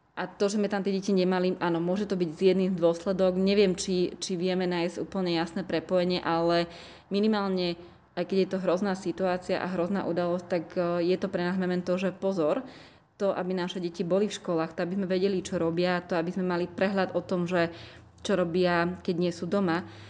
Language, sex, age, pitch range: Slovak, female, 20-39, 170-190 Hz